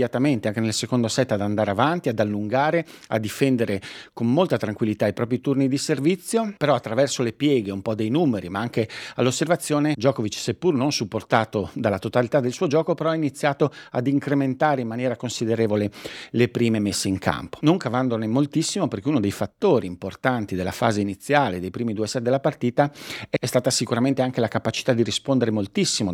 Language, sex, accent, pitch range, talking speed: Italian, male, native, 105-135 Hz, 180 wpm